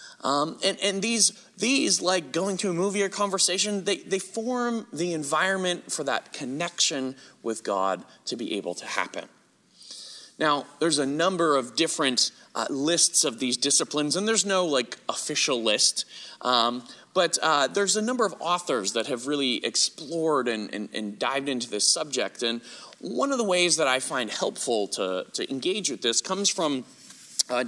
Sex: male